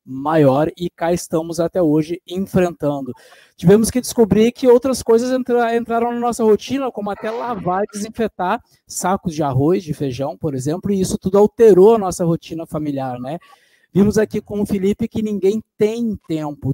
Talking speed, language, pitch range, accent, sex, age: 170 wpm, Portuguese, 165-220 Hz, Brazilian, male, 20-39